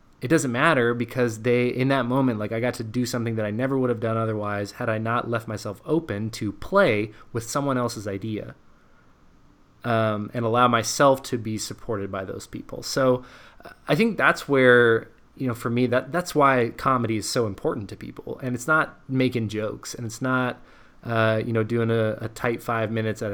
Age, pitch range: 20-39, 110-130 Hz